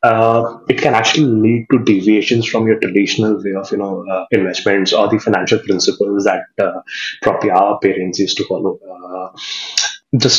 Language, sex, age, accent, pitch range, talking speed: English, male, 20-39, Indian, 105-130 Hz, 175 wpm